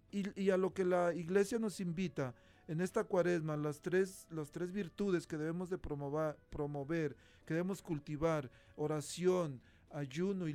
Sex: male